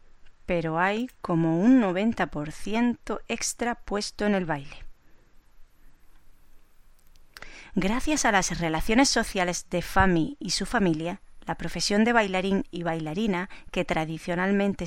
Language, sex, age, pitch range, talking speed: Spanish, female, 30-49, 170-210 Hz, 115 wpm